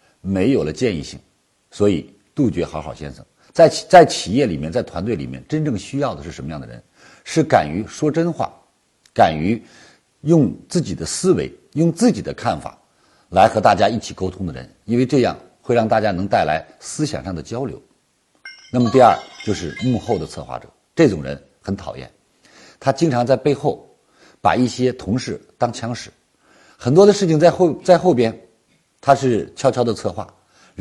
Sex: male